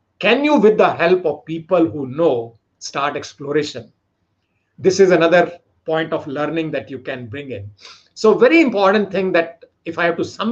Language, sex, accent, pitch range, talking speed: English, male, Indian, 125-195 Hz, 185 wpm